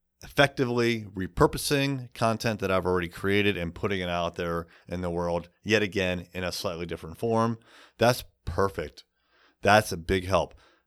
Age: 30-49